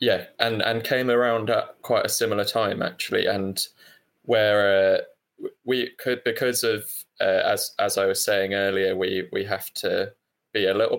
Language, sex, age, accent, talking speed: English, male, 20-39, British, 175 wpm